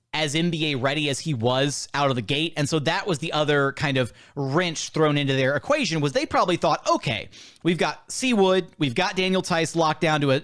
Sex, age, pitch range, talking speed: male, 30-49, 140-180 Hz, 225 wpm